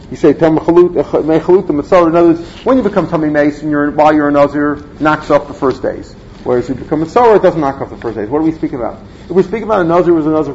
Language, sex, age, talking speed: English, male, 40-59, 285 wpm